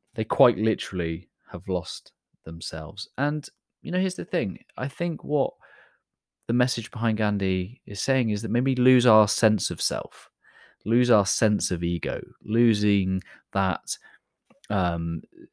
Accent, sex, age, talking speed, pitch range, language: British, male, 30-49, 145 wpm, 90-120 Hz, English